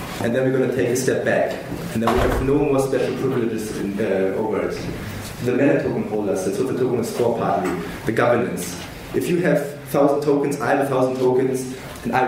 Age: 30-49